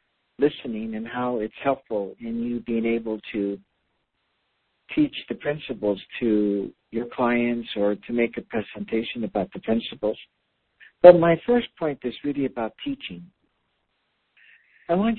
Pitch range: 110-145 Hz